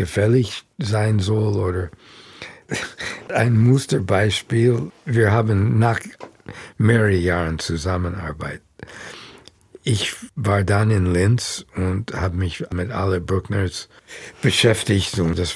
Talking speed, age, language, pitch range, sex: 100 wpm, 60-79, German, 90-110 Hz, male